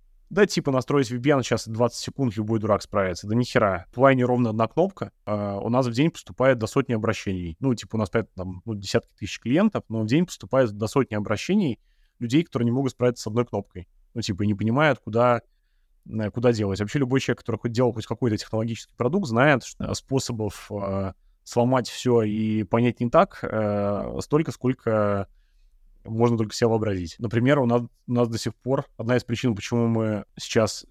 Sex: male